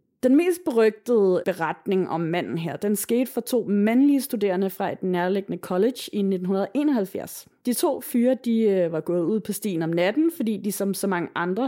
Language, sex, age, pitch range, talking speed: Danish, female, 30-49, 185-235 Hz, 185 wpm